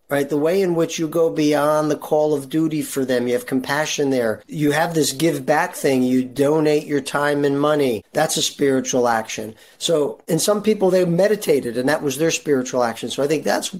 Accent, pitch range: American, 125-145 Hz